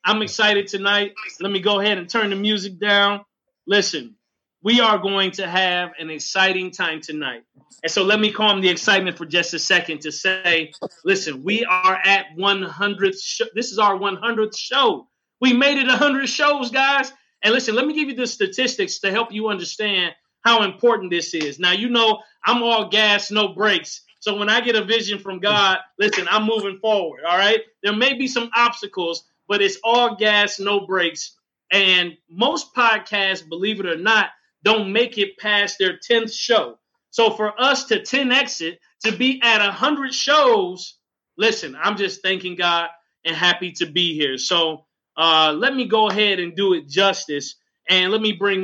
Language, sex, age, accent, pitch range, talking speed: English, male, 30-49, American, 185-230 Hz, 185 wpm